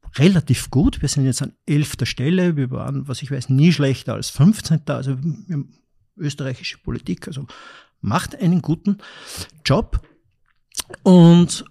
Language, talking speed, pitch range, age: German, 145 wpm, 130-160 Hz, 50-69